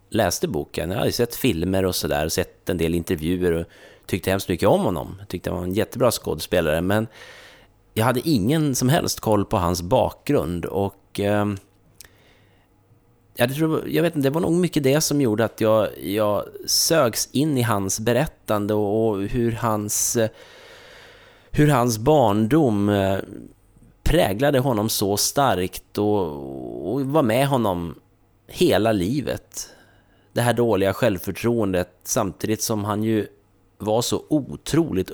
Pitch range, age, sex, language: 95-120 Hz, 30-49, male, Swedish